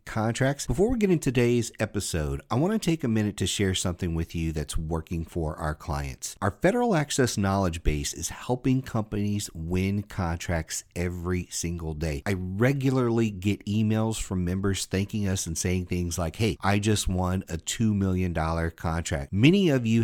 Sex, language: male, English